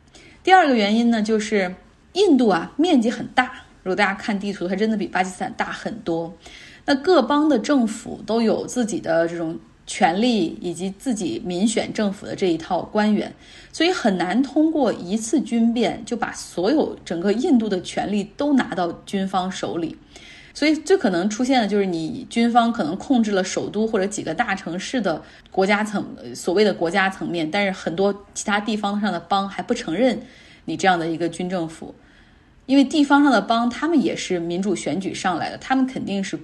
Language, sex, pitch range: Chinese, female, 180-245 Hz